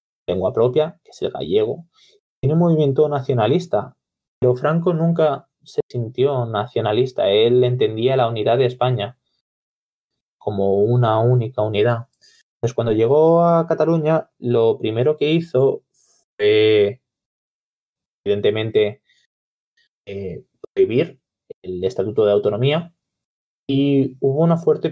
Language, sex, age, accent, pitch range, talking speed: Portuguese, male, 20-39, Spanish, 120-165 Hz, 115 wpm